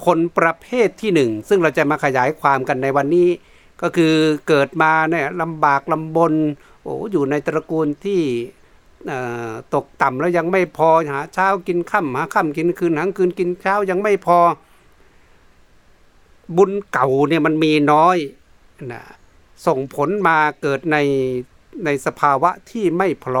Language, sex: Thai, male